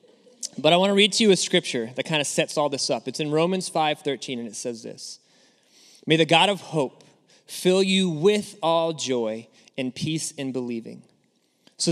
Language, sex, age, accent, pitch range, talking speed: English, male, 30-49, American, 150-200 Hz, 200 wpm